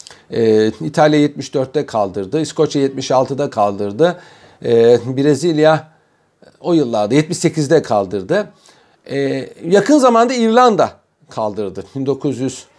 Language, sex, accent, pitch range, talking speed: Turkish, male, native, 135-190 Hz, 85 wpm